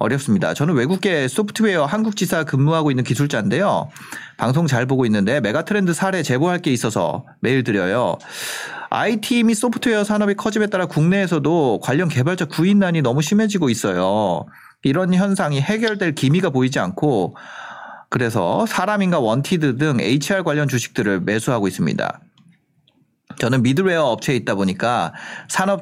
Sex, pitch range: male, 130-195 Hz